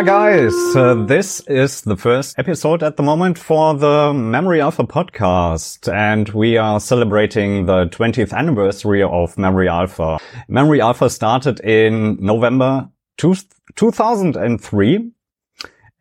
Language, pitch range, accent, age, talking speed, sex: English, 105-140 Hz, German, 30-49, 115 wpm, male